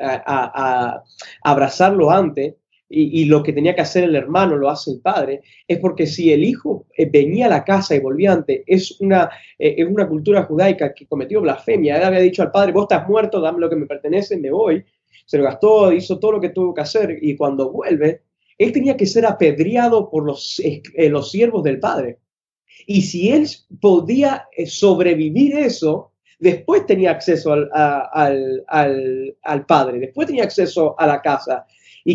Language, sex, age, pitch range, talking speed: Spanish, male, 20-39, 150-200 Hz, 185 wpm